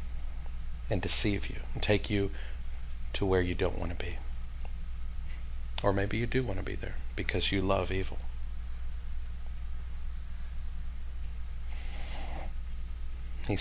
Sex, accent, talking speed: male, American, 115 wpm